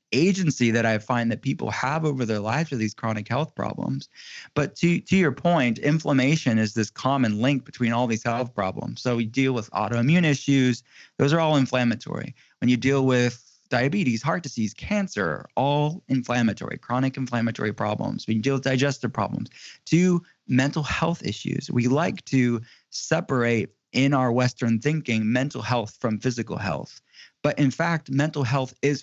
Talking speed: 165 wpm